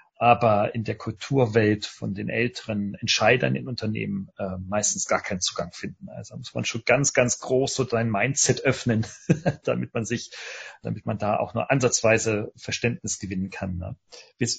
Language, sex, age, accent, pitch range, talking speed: German, male, 40-59, German, 105-140 Hz, 165 wpm